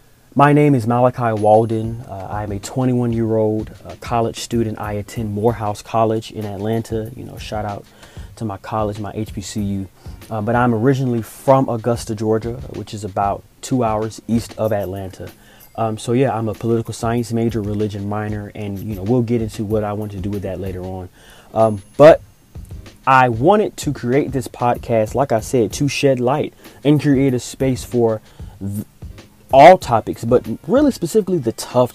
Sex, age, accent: male, 20-39, American